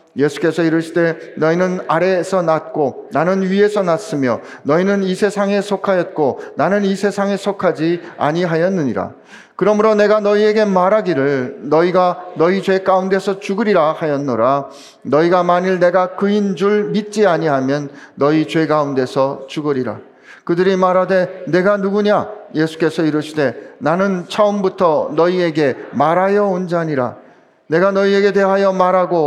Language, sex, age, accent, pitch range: Korean, male, 40-59, native, 165-200 Hz